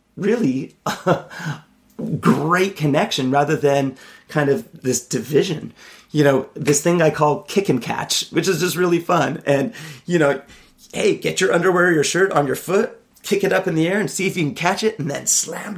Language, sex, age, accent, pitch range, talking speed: English, male, 30-49, American, 135-175 Hz, 195 wpm